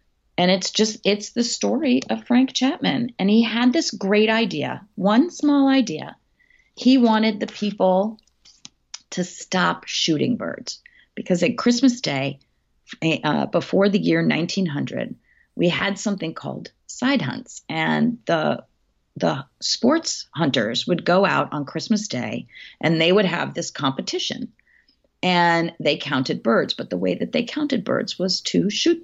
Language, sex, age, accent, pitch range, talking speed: English, female, 40-59, American, 155-235 Hz, 150 wpm